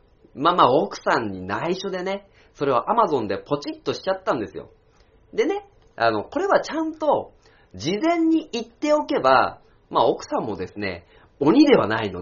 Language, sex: Japanese, male